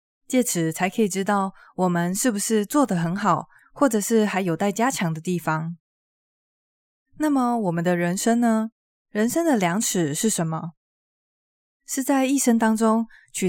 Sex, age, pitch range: female, 20-39, 180-240 Hz